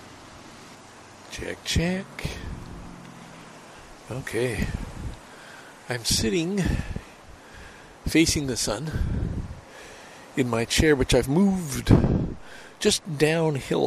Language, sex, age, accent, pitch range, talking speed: English, male, 60-79, American, 110-155 Hz, 70 wpm